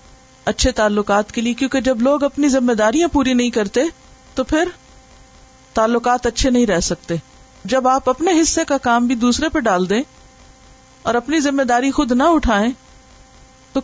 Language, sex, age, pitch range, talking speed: Urdu, female, 50-69, 215-265 Hz, 170 wpm